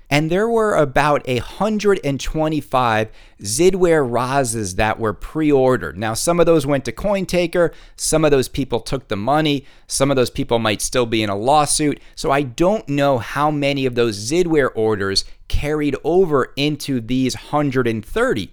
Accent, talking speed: American, 160 wpm